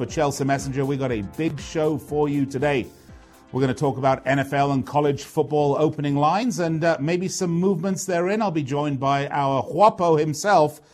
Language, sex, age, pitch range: English, male, 40-59, 125-170 Hz